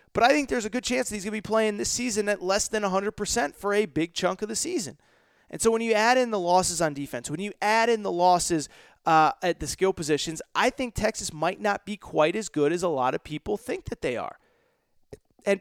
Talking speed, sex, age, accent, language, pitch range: 255 wpm, male, 30-49, American, English, 170-245 Hz